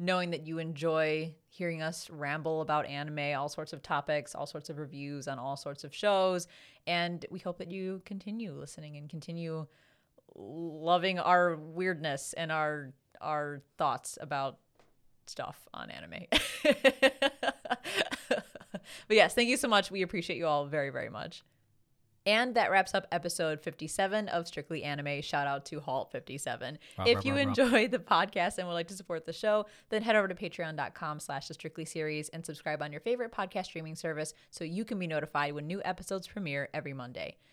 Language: English